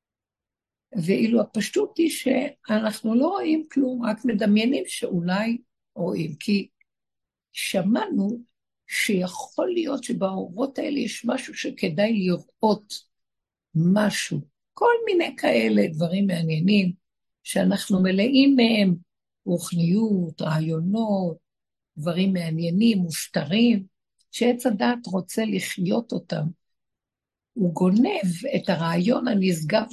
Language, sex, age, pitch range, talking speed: Hebrew, female, 60-79, 175-240 Hz, 90 wpm